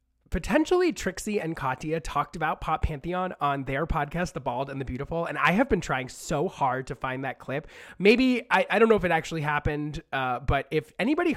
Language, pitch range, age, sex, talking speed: English, 140-180 Hz, 20-39, male, 210 wpm